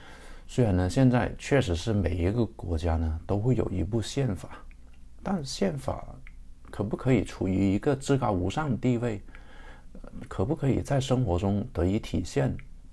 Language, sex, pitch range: Chinese, male, 85-120 Hz